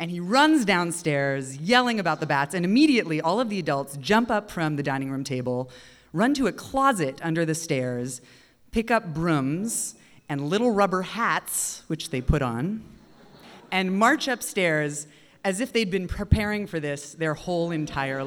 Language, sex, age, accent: English, female, 30-49, American